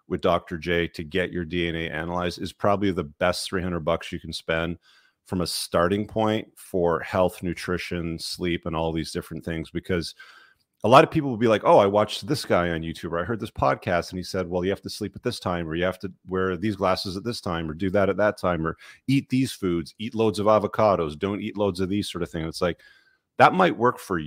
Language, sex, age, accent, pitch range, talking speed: English, male, 40-59, American, 85-105 Hz, 240 wpm